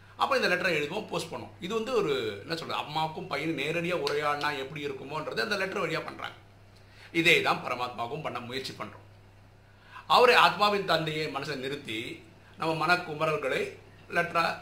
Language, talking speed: Tamil, 145 wpm